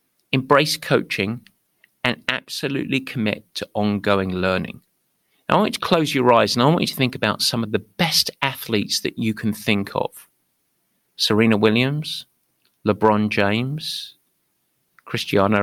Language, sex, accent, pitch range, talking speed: English, male, British, 110-155 Hz, 145 wpm